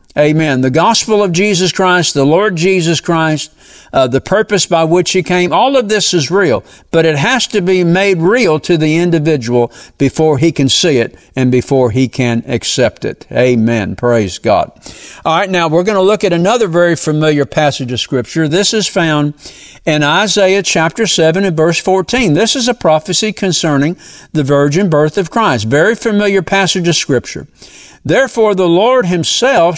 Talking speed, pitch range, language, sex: 180 wpm, 140-190 Hz, English, male